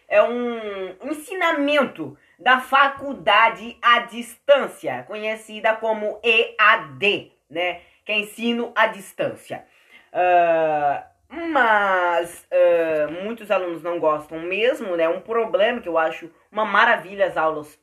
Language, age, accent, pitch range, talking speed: Portuguese, 20-39, Brazilian, 195-270 Hz, 110 wpm